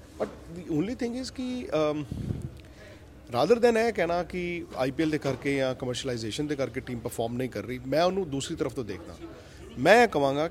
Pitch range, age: 130-195 Hz, 30-49